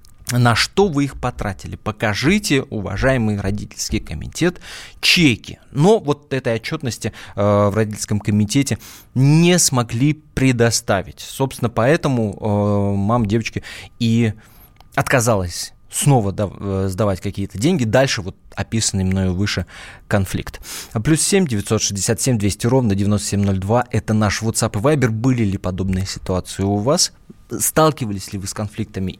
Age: 20-39